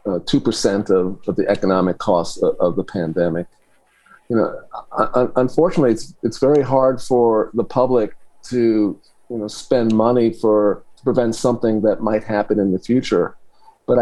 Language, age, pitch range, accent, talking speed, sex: English, 40-59, 100-125 Hz, American, 165 wpm, male